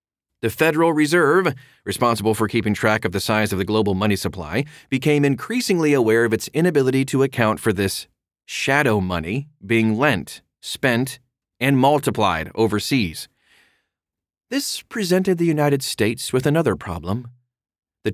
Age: 30-49